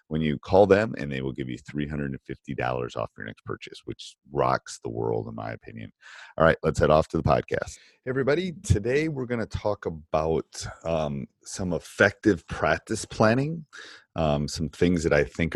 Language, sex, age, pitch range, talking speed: English, male, 30-49, 75-90 Hz, 185 wpm